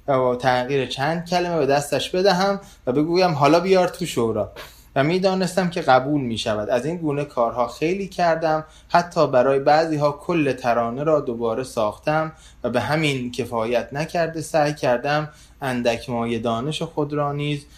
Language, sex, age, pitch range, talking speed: Persian, male, 20-39, 125-160 Hz, 155 wpm